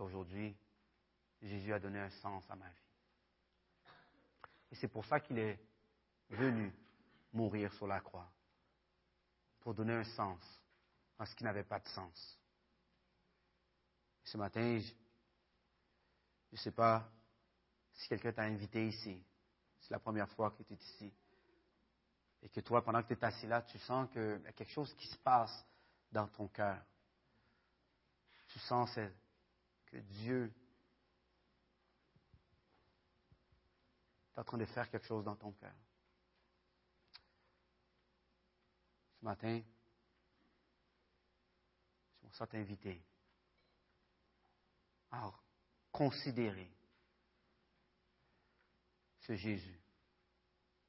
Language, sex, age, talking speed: French, male, 40-59, 115 wpm